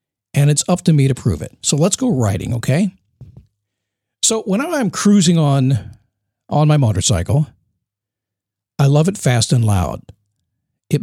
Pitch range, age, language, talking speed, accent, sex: 115-175 Hz, 50-69, English, 150 wpm, American, male